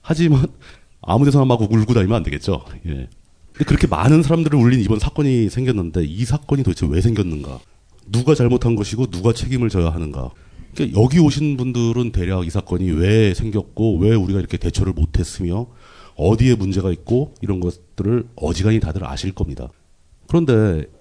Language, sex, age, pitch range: Korean, male, 40-59, 90-130 Hz